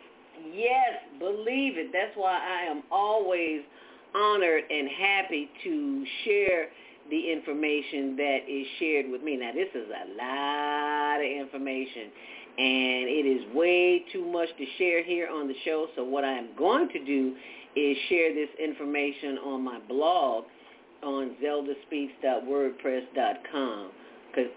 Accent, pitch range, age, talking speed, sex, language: American, 135-220 Hz, 50-69, 135 wpm, female, English